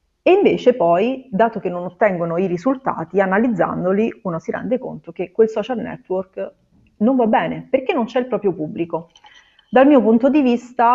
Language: Italian